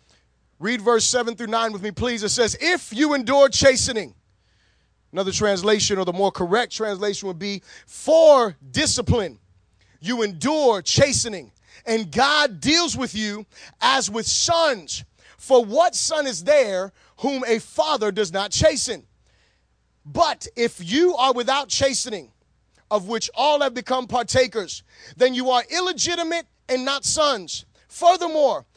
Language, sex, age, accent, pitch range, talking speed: English, male, 30-49, American, 195-270 Hz, 140 wpm